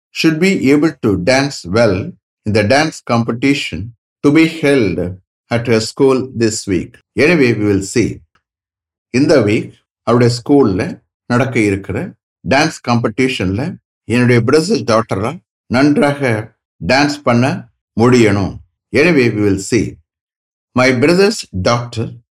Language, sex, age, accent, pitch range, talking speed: English, male, 60-79, Indian, 105-145 Hz, 120 wpm